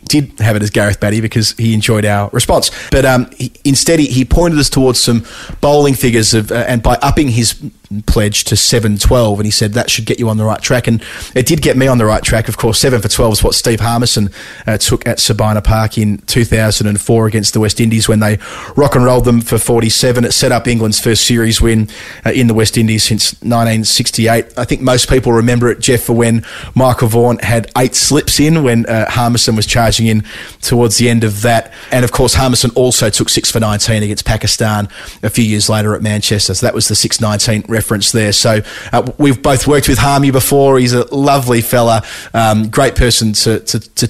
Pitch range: 110-125 Hz